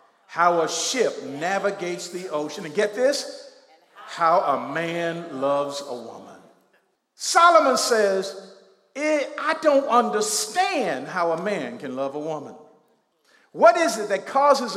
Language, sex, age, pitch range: English, male, 50-69, 170-255 Hz